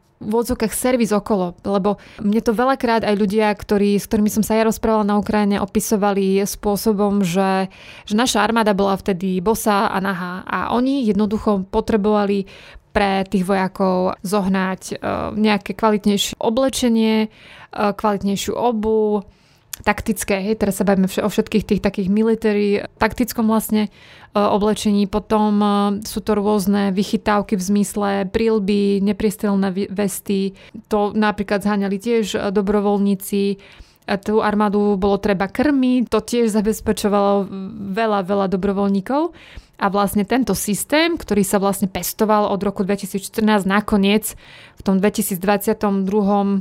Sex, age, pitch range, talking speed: female, 20-39, 200-220 Hz, 135 wpm